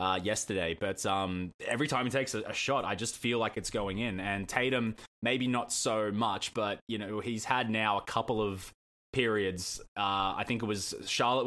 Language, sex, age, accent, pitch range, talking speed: English, male, 20-39, Australian, 105-120 Hz, 210 wpm